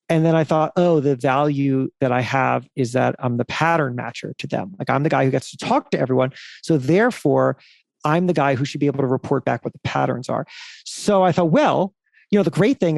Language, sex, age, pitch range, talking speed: English, male, 40-59, 140-180 Hz, 245 wpm